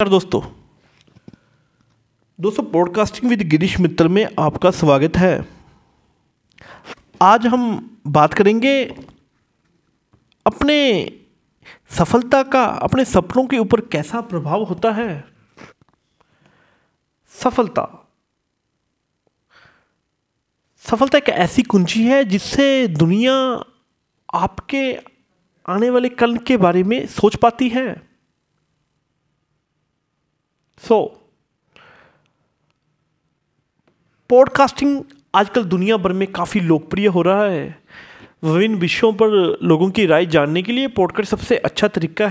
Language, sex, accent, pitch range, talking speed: Hindi, male, native, 170-235 Hz, 100 wpm